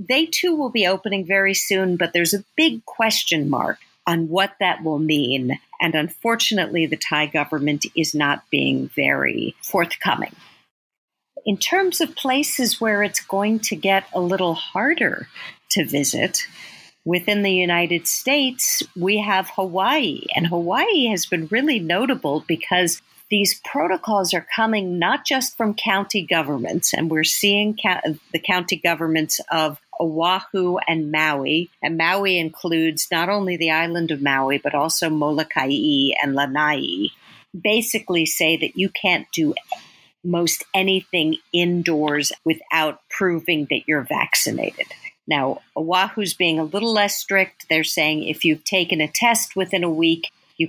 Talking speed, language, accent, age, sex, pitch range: 145 wpm, English, American, 50-69, female, 160-205 Hz